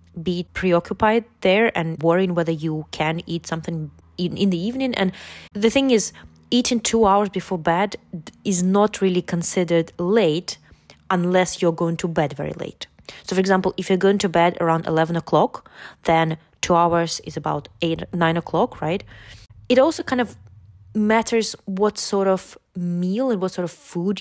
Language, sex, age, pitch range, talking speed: English, female, 20-39, 160-195 Hz, 170 wpm